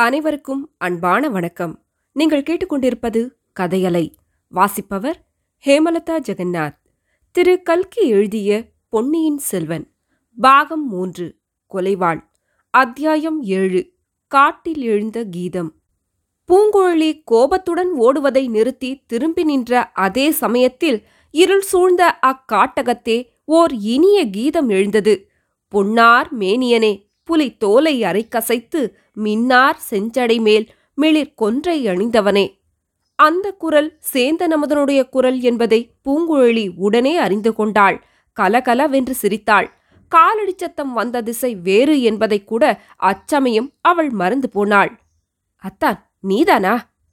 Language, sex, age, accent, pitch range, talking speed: Tamil, female, 20-39, native, 205-300 Hz, 90 wpm